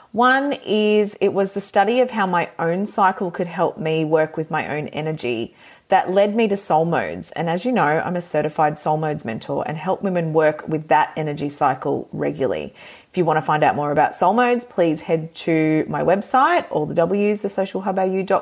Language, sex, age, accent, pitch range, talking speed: English, female, 30-49, Australian, 155-210 Hz, 205 wpm